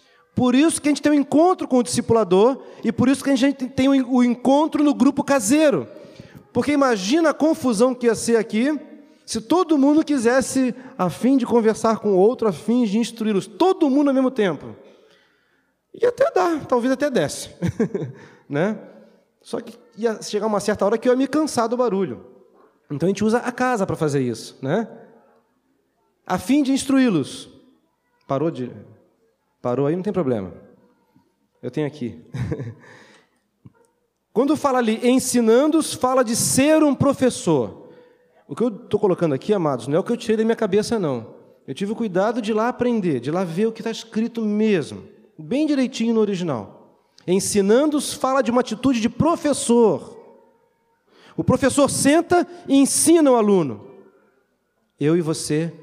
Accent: Brazilian